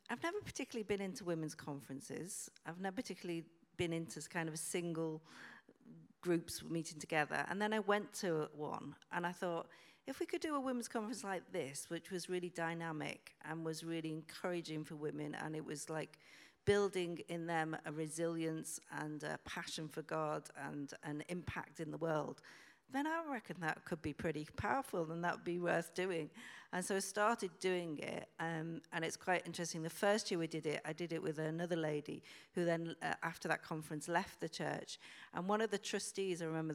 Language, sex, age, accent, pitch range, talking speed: English, female, 50-69, British, 160-200 Hz, 195 wpm